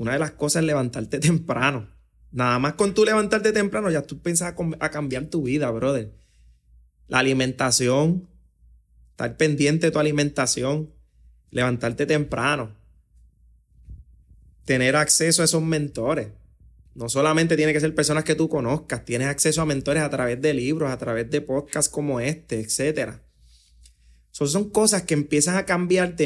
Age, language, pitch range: 30-49, Spanish, 130-175 Hz